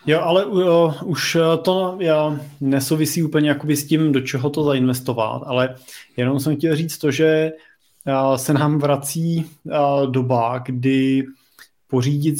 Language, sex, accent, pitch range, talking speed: Czech, male, native, 130-155 Hz, 135 wpm